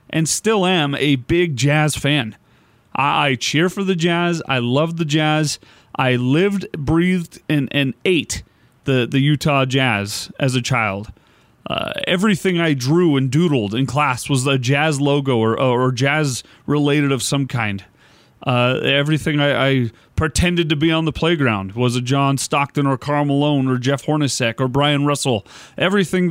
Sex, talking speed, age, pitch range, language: male, 165 wpm, 30-49, 130-160 Hz, English